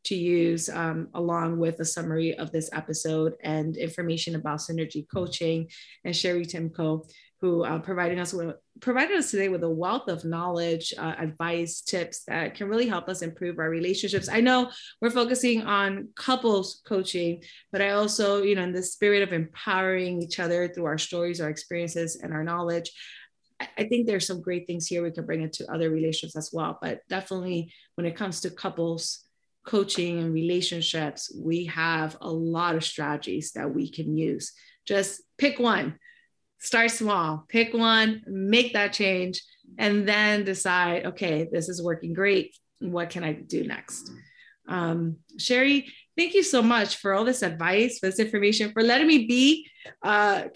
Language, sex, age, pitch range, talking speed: English, female, 30-49, 170-220 Hz, 170 wpm